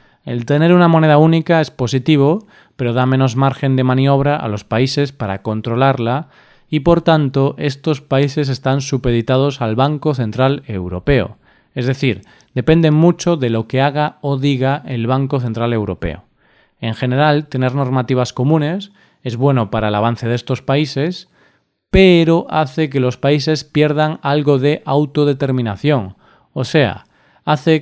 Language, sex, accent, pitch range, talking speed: Spanish, male, Spanish, 125-150 Hz, 145 wpm